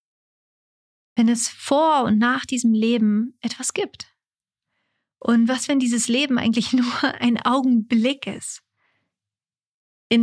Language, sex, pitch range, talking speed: German, female, 230-275 Hz, 115 wpm